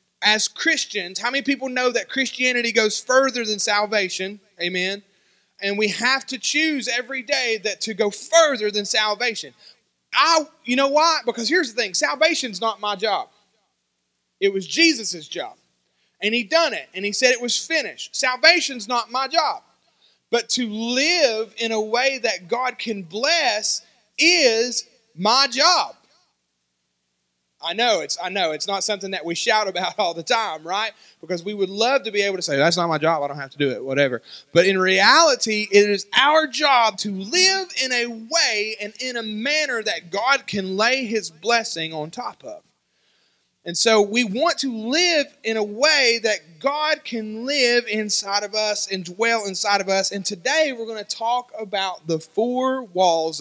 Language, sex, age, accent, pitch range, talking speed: English, male, 30-49, American, 195-260 Hz, 180 wpm